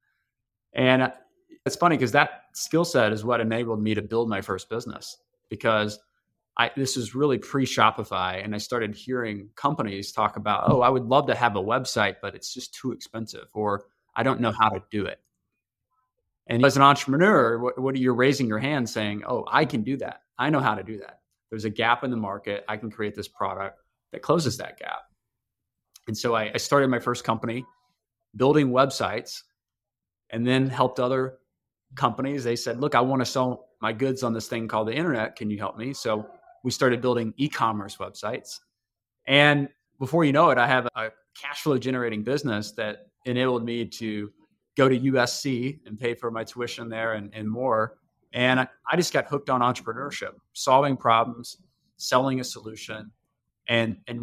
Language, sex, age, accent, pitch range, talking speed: English, male, 20-39, American, 110-135 Hz, 190 wpm